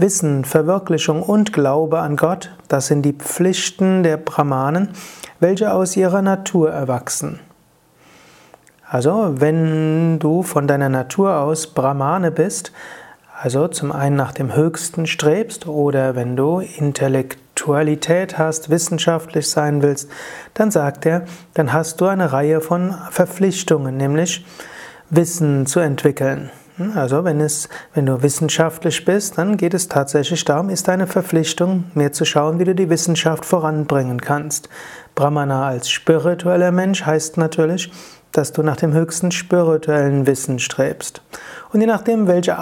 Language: German